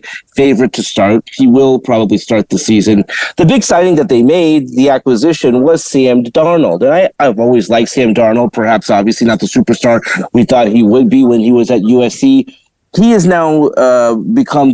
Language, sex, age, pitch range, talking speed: English, male, 30-49, 120-170 Hz, 190 wpm